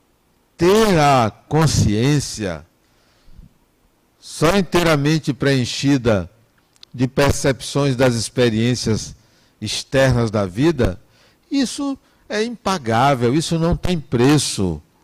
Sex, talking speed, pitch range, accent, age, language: male, 80 wpm, 115-155 Hz, Brazilian, 60-79, Portuguese